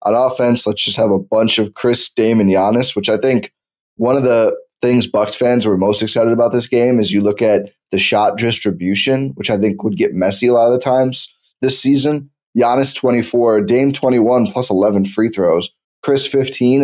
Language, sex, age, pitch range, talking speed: English, male, 20-39, 100-125 Hz, 205 wpm